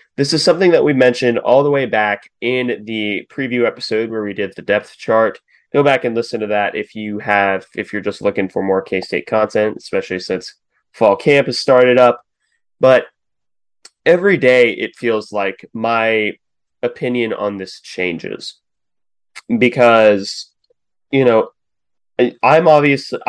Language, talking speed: English, 155 wpm